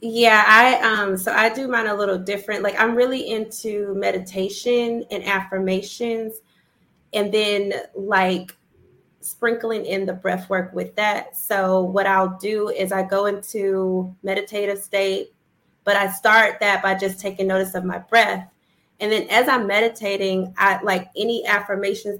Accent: American